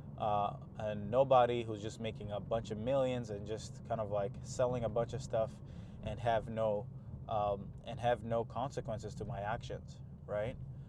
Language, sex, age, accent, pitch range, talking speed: English, male, 20-39, American, 110-135 Hz, 175 wpm